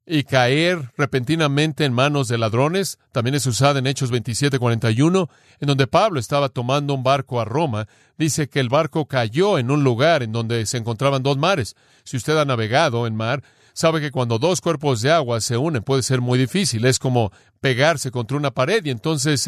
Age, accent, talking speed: 40-59, Mexican, 195 wpm